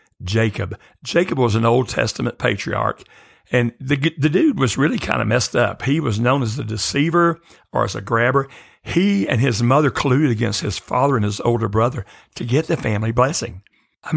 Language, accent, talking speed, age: English, American, 190 wpm, 60-79